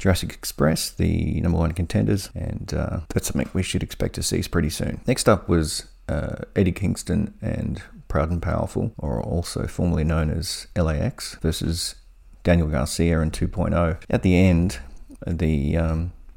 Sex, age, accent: male, 30-49, Australian